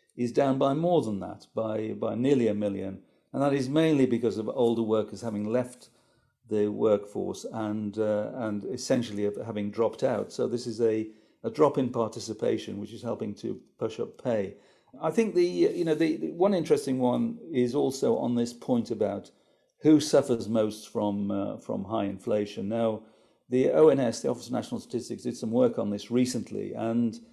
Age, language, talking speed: 50-69, English, 185 wpm